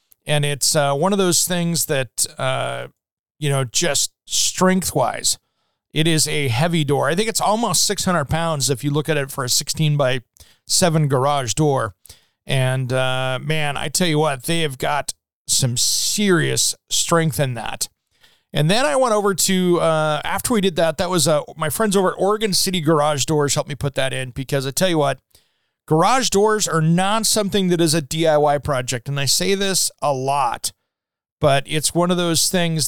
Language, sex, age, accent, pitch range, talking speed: English, male, 40-59, American, 135-170 Hz, 190 wpm